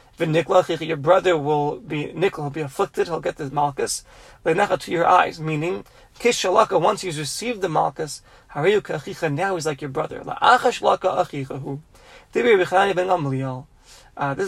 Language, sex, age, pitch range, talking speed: English, male, 30-49, 150-190 Hz, 120 wpm